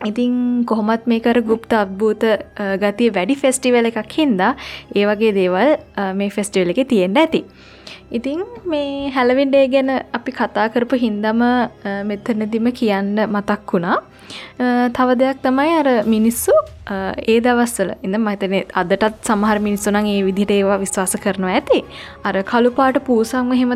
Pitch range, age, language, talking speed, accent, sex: 200-255 Hz, 20-39, English, 150 wpm, Indian, female